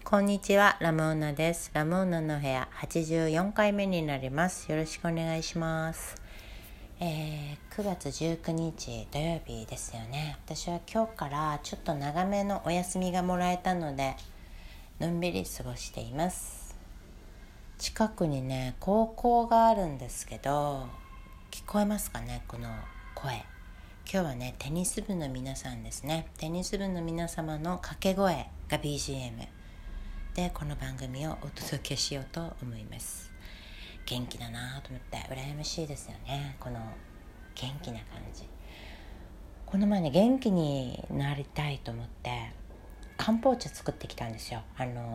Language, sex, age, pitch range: Japanese, female, 60-79, 115-175 Hz